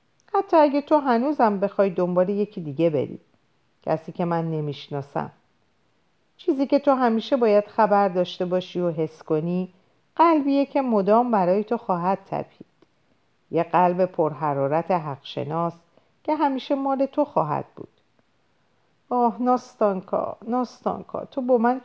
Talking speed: 130 wpm